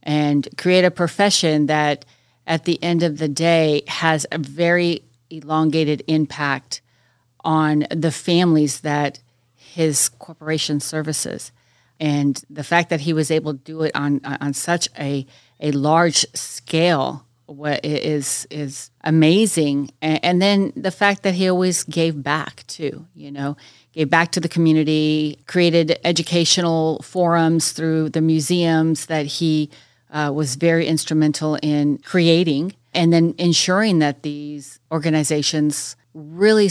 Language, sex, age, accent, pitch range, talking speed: English, female, 40-59, American, 145-165 Hz, 135 wpm